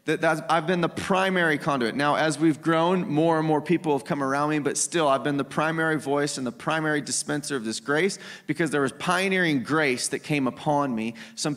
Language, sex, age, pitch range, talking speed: English, male, 30-49, 140-165 Hz, 220 wpm